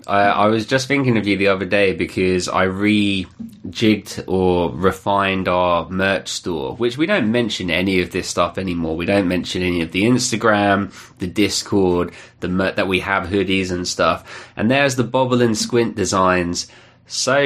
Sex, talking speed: male, 180 wpm